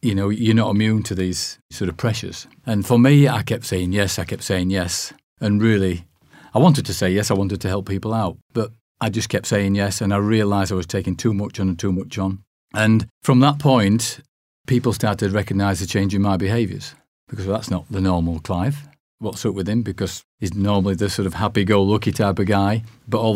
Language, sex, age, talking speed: English, male, 40-59, 225 wpm